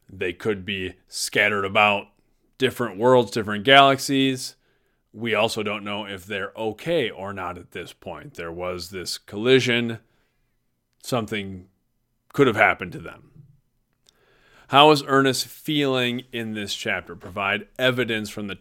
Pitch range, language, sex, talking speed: 100-125 Hz, English, male, 135 wpm